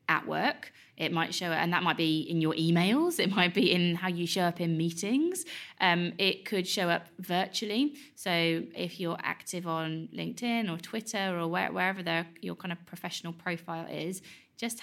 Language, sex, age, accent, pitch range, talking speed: English, female, 20-39, British, 165-195 Hz, 190 wpm